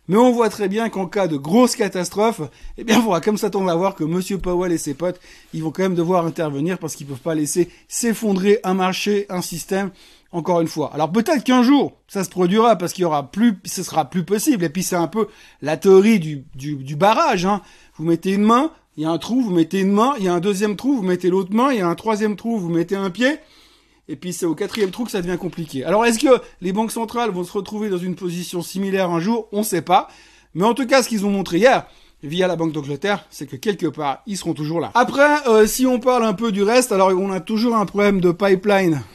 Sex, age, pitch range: male, 30-49, 170-220 Hz